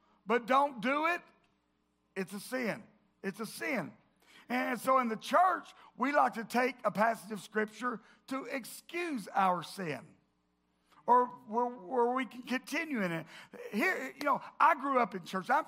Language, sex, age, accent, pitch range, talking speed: English, male, 50-69, American, 205-260 Hz, 165 wpm